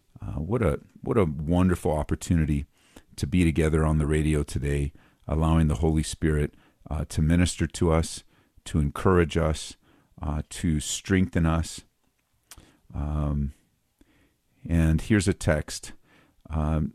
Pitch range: 80-95 Hz